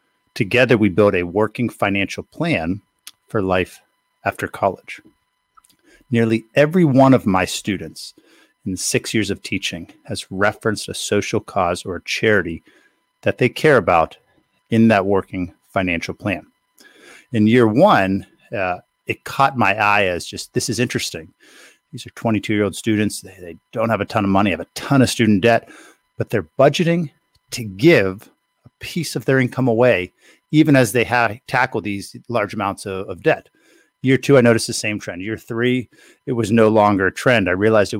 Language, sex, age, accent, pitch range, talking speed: English, male, 50-69, American, 100-125 Hz, 175 wpm